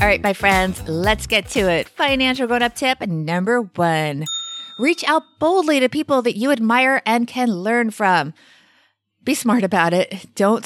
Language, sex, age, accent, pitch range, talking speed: English, female, 30-49, American, 185-245 Hz, 170 wpm